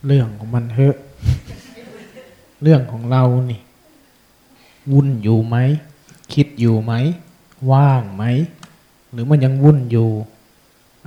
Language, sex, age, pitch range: Thai, male, 20-39, 120-150 Hz